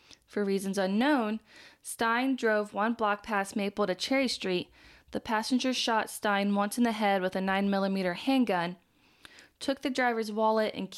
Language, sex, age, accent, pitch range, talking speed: English, female, 20-39, American, 190-225 Hz, 155 wpm